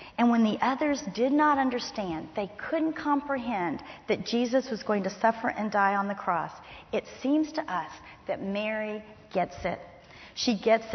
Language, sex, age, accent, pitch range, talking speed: English, female, 40-59, American, 215-265 Hz, 170 wpm